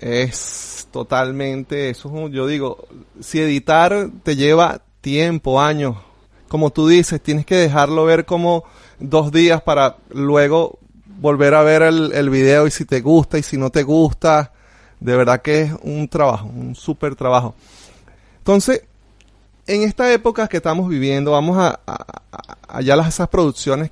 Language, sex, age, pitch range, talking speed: Spanish, male, 30-49, 115-160 Hz, 155 wpm